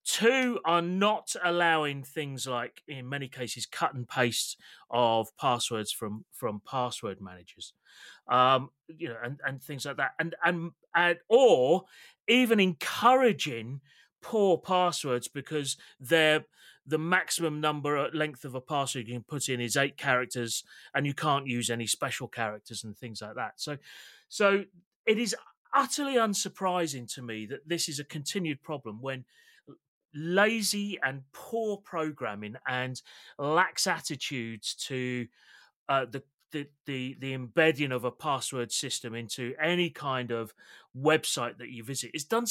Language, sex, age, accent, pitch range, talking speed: English, male, 30-49, British, 125-175 Hz, 150 wpm